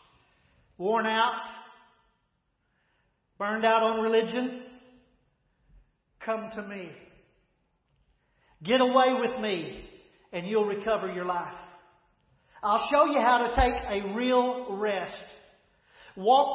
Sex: male